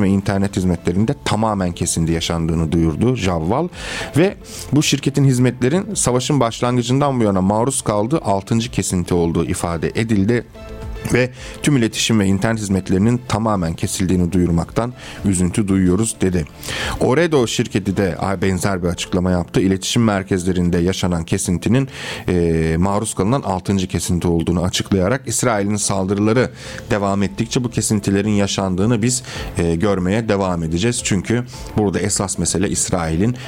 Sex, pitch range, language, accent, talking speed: male, 90-120 Hz, Turkish, native, 120 wpm